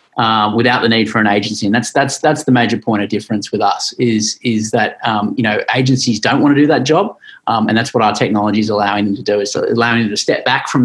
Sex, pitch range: male, 110-130 Hz